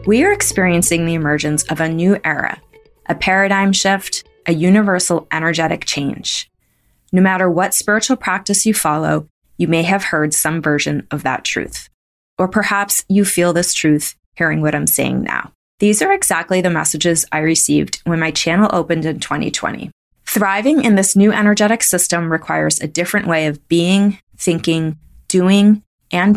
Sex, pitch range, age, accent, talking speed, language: female, 160-195 Hz, 20-39, American, 160 wpm, English